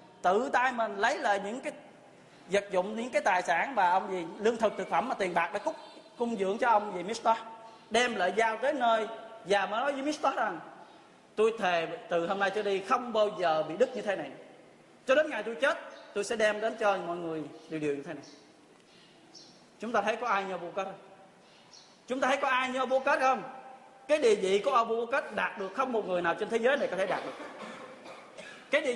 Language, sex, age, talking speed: Vietnamese, male, 20-39, 230 wpm